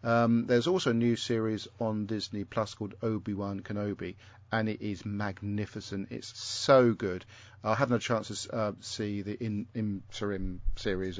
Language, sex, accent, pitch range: English, male, British, 100-115 Hz